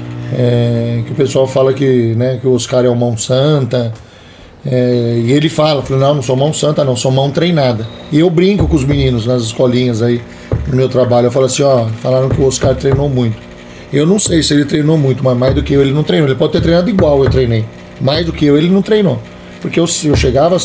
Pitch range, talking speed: 125-155 Hz, 245 wpm